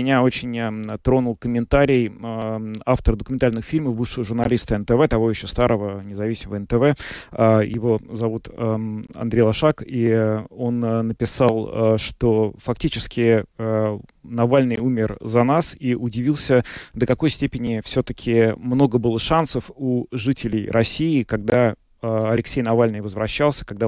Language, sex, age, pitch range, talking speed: Russian, male, 30-49, 110-125 Hz, 115 wpm